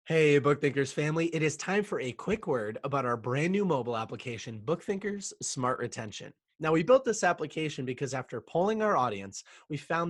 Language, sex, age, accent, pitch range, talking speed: English, male, 20-39, American, 120-160 Hz, 185 wpm